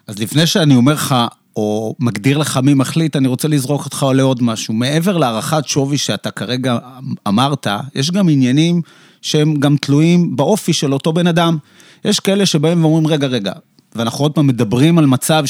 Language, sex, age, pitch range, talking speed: Hebrew, male, 30-49, 130-165 Hz, 175 wpm